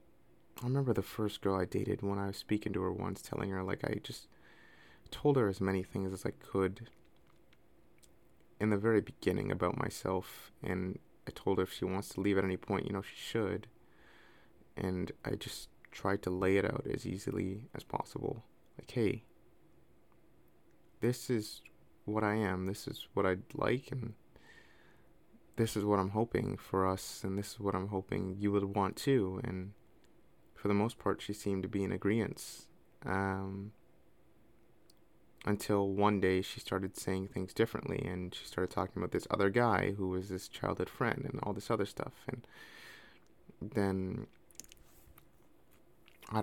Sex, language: male, English